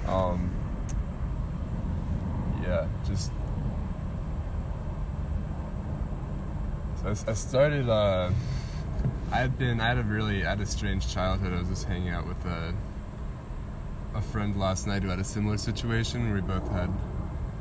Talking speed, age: 135 wpm, 20-39